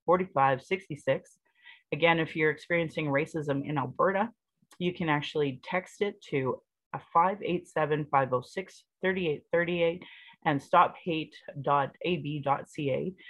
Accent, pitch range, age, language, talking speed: American, 140-185 Hz, 30-49, English, 75 wpm